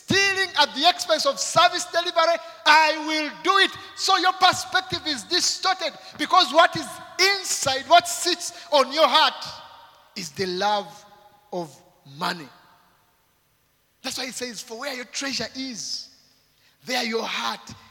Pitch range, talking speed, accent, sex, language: 185-285 Hz, 140 wpm, South African, male, English